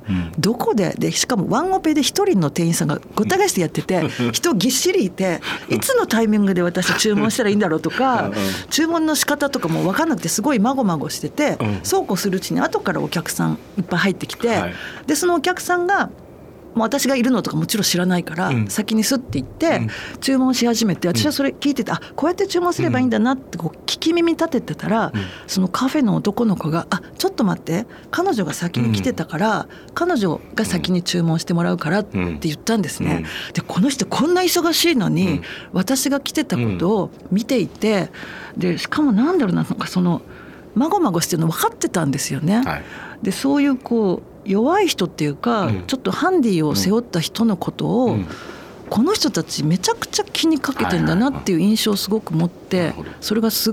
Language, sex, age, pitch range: Japanese, female, 40-59, 170-270 Hz